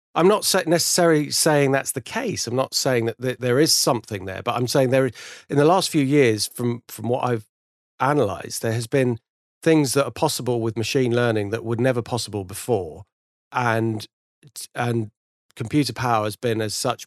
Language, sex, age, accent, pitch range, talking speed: English, male, 40-59, British, 110-130 Hz, 185 wpm